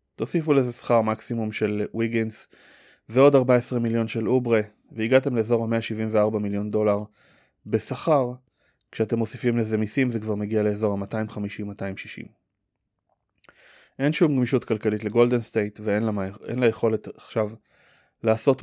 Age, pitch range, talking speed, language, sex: 20-39, 105-120 Hz, 120 wpm, Hebrew, male